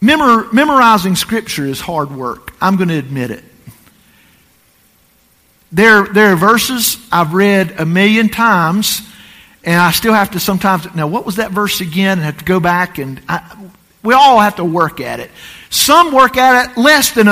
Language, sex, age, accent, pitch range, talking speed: English, male, 50-69, American, 190-265 Hz, 175 wpm